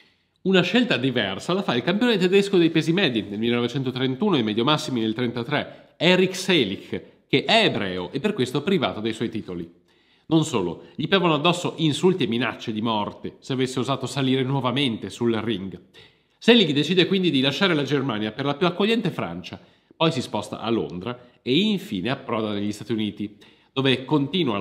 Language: Italian